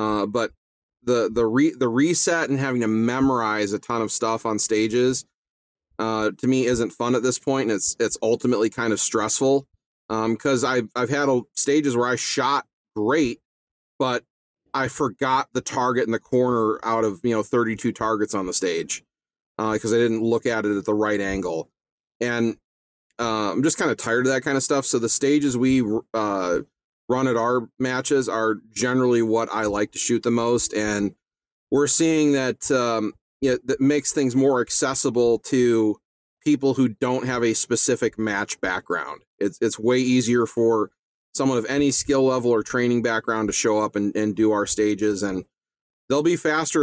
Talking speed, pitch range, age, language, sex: 190 wpm, 110-135 Hz, 40-59, English, male